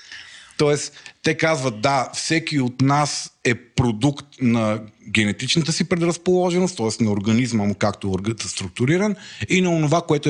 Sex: male